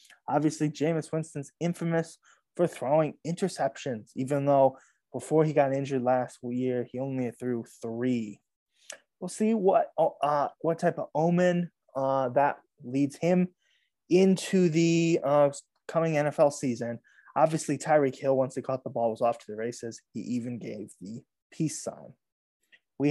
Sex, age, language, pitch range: male, 20-39, English, 135-175 Hz